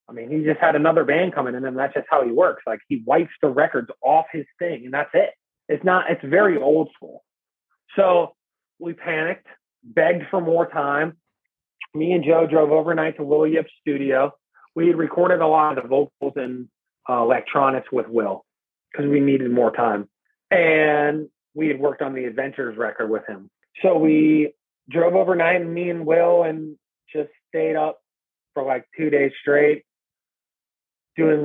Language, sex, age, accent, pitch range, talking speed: English, male, 30-49, American, 140-170 Hz, 180 wpm